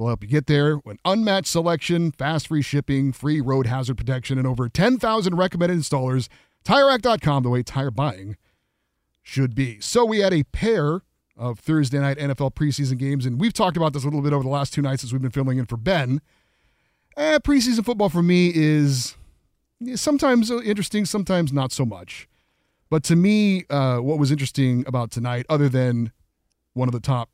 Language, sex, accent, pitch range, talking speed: English, male, American, 125-165 Hz, 185 wpm